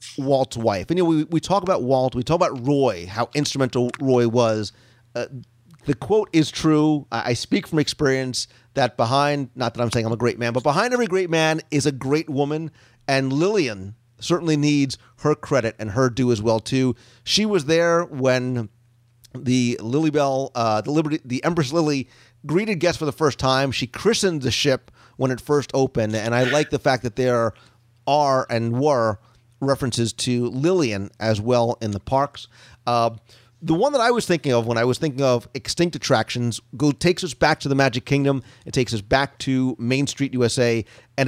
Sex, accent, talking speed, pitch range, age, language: male, American, 195 wpm, 120-155 Hz, 40-59, English